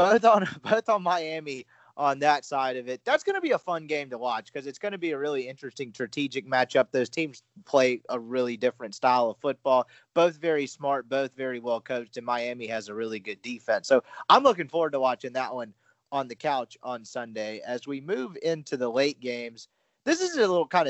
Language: English